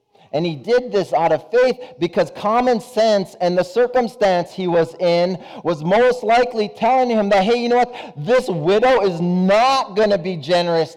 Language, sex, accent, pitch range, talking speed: English, male, American, 180-250 Hz, 185 wpm